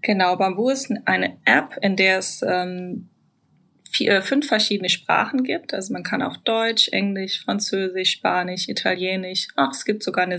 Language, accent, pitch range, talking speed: German, German, 180-225 Hz, 160 wpm